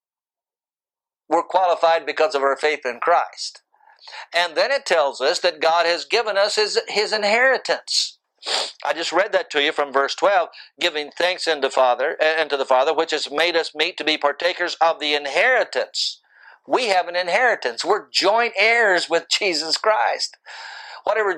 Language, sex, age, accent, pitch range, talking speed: English, male, 50-69, American, 150-205 Hz, 165 wpm